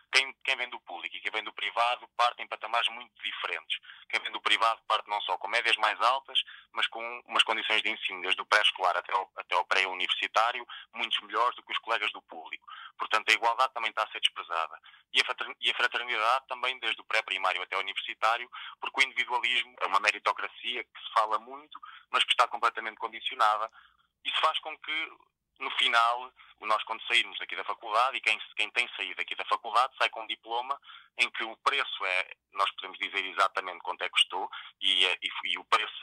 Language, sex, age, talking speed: Portuguese, male, 20-39, 195 wpm